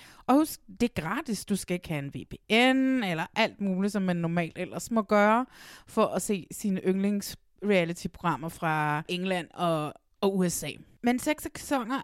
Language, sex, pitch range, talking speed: Danish, female, 180-225 Hz, 160 wpm